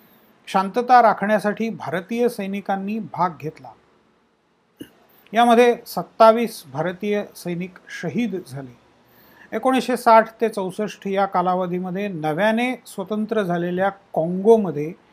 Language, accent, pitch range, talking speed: Marathi, native, 185-230 Hz, 85 wpm